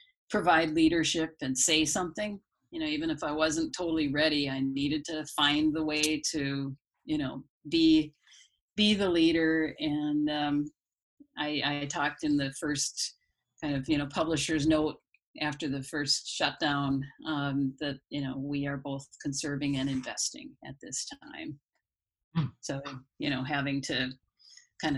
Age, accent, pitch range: 50-69, American, 145-205 Hz